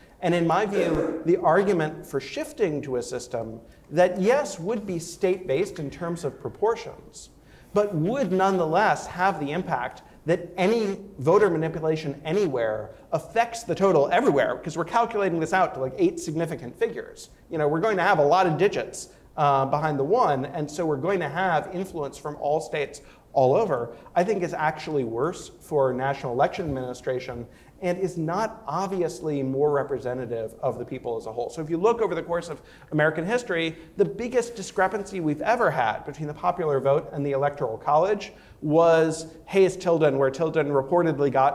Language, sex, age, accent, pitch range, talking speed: English, male, 40-59, American, 140-185 Hz, 175 wpm